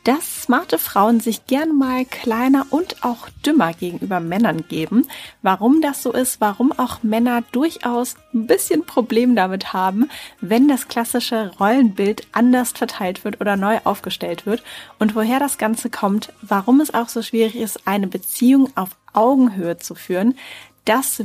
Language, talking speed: German, 155 wpm